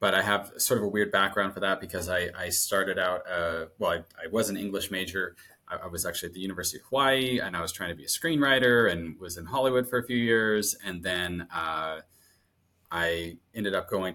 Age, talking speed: 30-49, 235 wpm